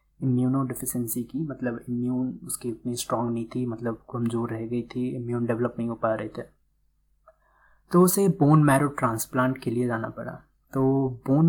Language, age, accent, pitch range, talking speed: Hindi, 20-39, native, 120-140 Hz, 170 wpm